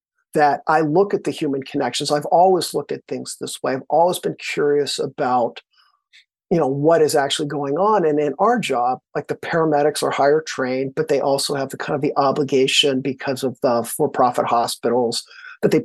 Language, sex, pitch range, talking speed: English, male, 140-175 Hz, 195 wpm